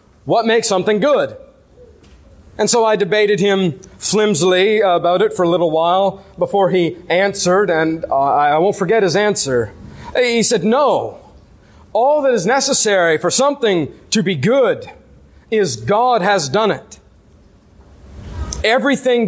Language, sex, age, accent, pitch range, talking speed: English, male, 40-59, American, 160-230 Hz, 135 wpm